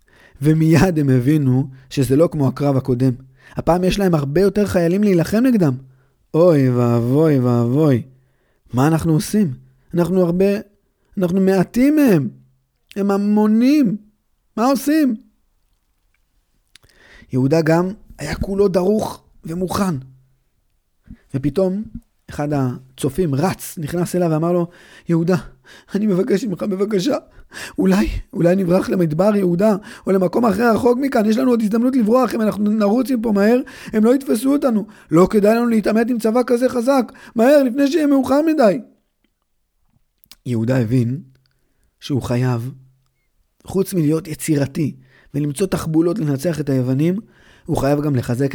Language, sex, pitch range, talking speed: Hebrew, male, 130-210 Hz, 130 wpm